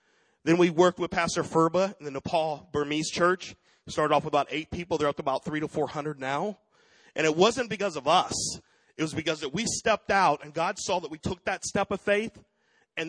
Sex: male